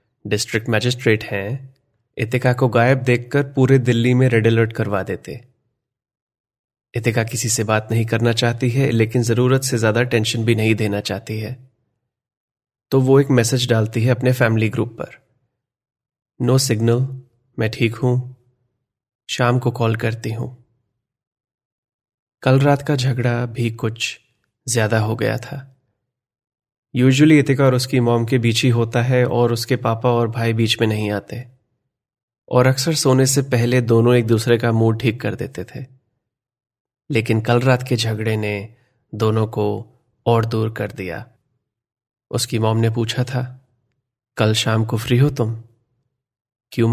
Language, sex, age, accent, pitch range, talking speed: Hindi, male, 30-49, native, 115-130 Hz, 155 wpm